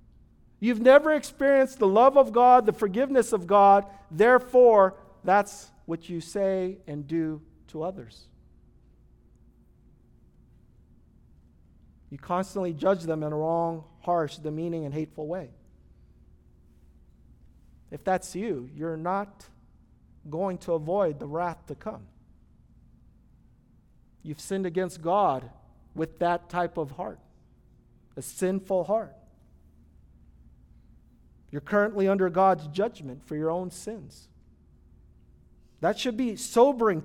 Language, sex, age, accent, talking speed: English, male, 40-59, American, 110 wpm